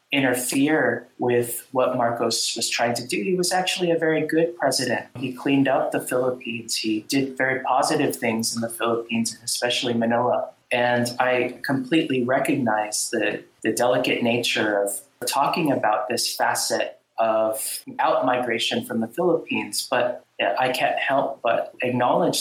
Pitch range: 120-140 Hz